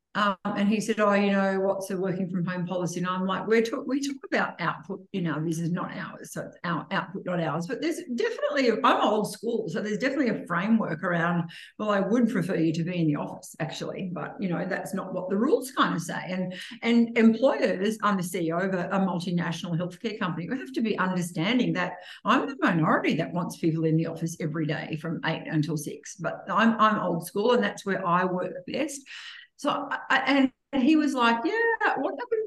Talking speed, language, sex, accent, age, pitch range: 220 wpm, English, female, Australian, 50-69, 170-230 Hz